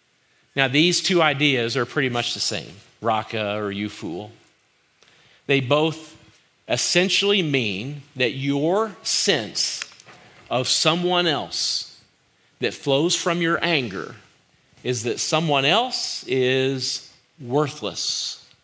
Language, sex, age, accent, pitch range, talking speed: English, male, 40-59, American, 115-145 Hz, 110 wpm